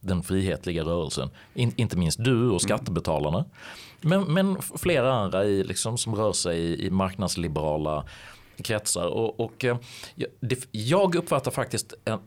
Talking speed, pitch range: 145 wpm, 95-130 Hz